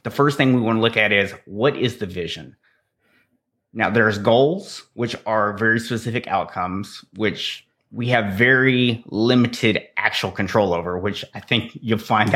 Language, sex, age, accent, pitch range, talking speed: English, male, 30-49, American, 100-125 Hz, 165 wpm